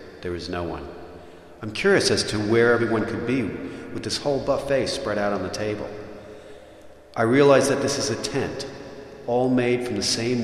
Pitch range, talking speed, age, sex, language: 100-120 Hz, 190 wpm, 40-59, male, English